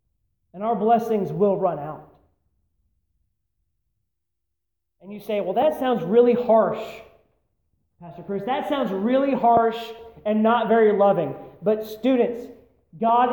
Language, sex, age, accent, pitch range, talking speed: English, male, 30-49, American, 175-235 Hz, 120 wpm